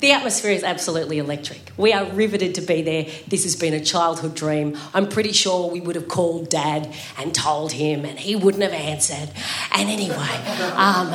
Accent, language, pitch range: Australian, English, 160-205 Hz